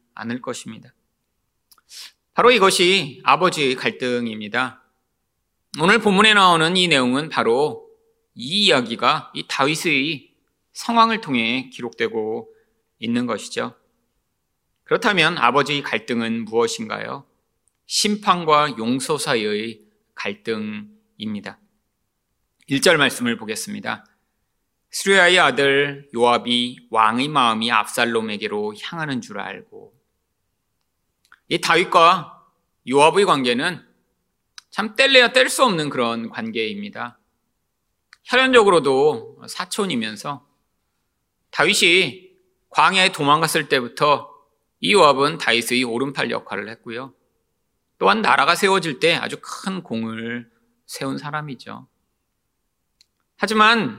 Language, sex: Korean, male